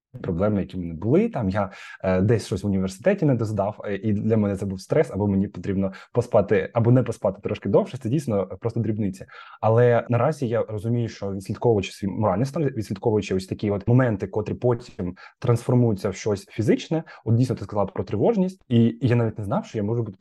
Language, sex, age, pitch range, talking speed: Ukrainian, male, 20-39, 105-125 Hz, 195 wpm